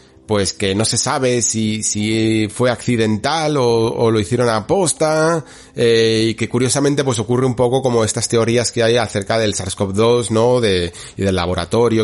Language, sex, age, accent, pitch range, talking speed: Spanish, male, 30-49, Spanish, 100-120 Hz, 180 wpm